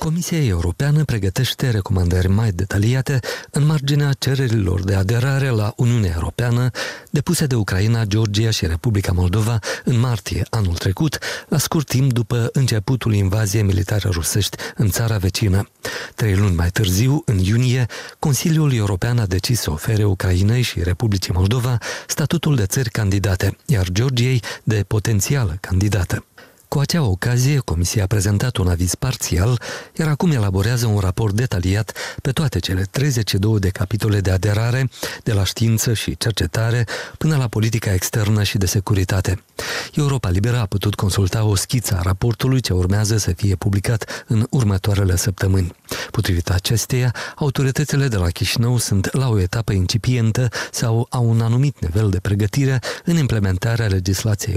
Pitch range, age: 100-125 Hz, 50-69